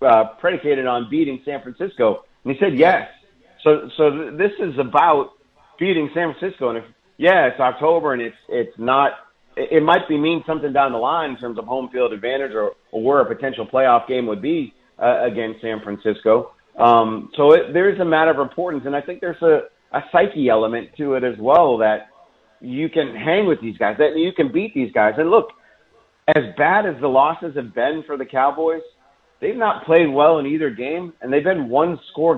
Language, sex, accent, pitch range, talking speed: English, male, American, 125-160 Hz, 205 wpm